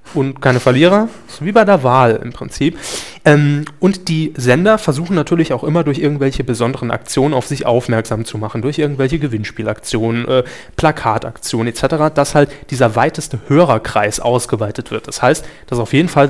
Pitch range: 125-155 Hz